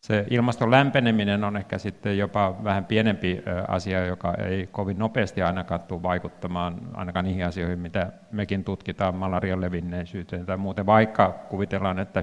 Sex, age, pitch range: male, 50-69, 95-105 Hz